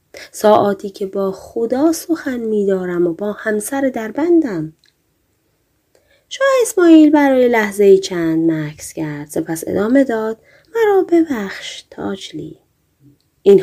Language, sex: Persian, female